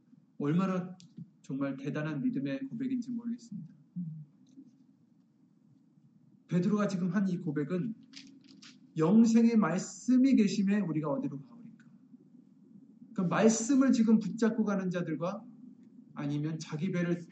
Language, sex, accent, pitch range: Korean, male, native, 175-235 Hz